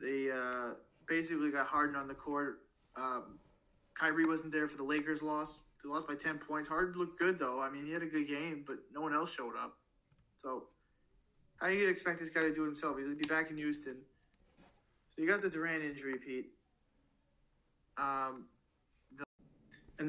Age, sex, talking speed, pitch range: 20-39, male, 195 wpm, 145-175 Hz